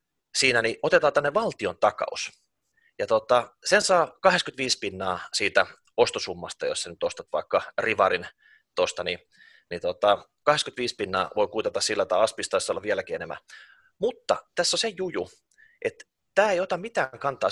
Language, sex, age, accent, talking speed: Finnish, male, 30-49, native, 155 wpm